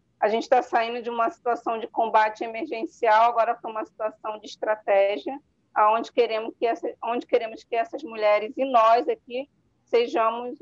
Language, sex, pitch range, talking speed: Portuguese, female, 210-275 Hz, 140 wpm